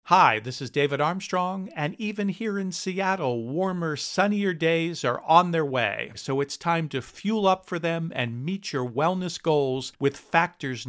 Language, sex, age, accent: English, male, 50-69, American